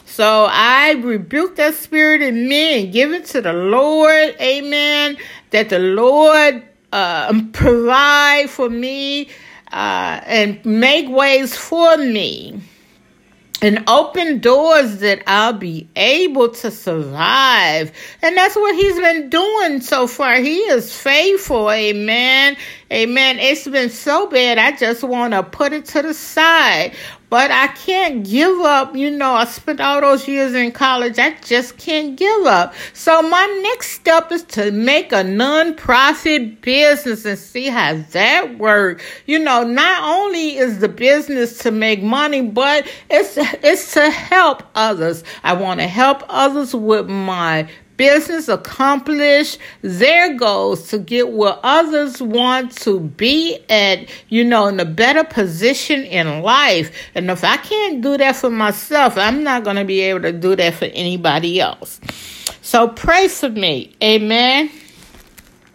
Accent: American